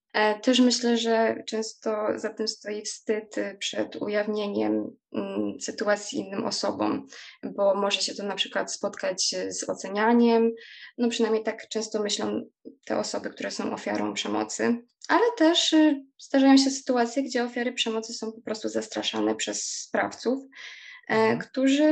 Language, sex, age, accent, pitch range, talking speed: Polish, female, 20-39, native, 205-255 Hz, 130 wpm